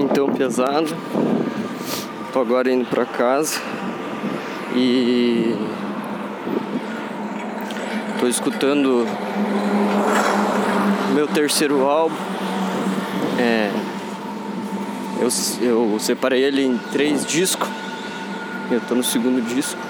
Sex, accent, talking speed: male, Brazilian, 80 wpm